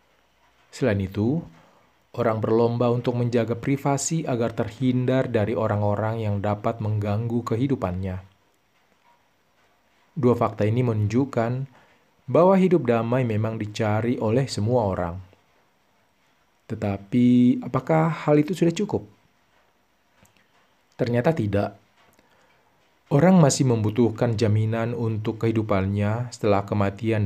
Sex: male